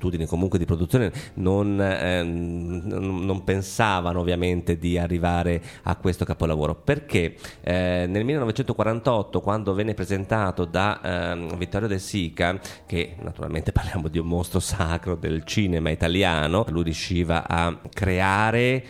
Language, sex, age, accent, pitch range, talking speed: Italian, male, 30-49, native, 85-110 Hz, 120 wpm